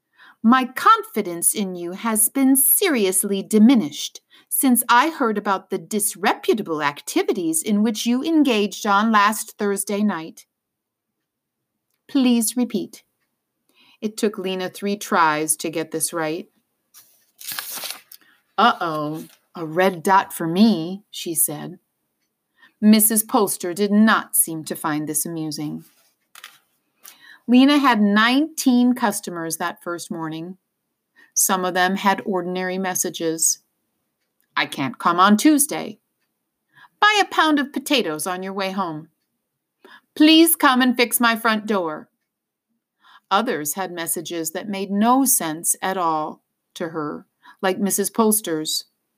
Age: 40-59